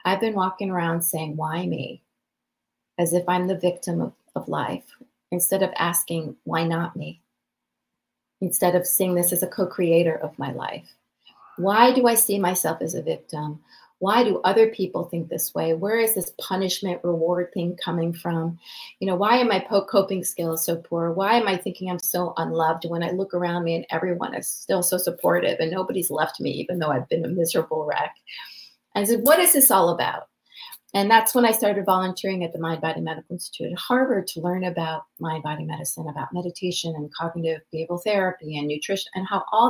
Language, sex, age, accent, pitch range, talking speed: English, female, 30-49, American, 170-205 Hz, 200 wpm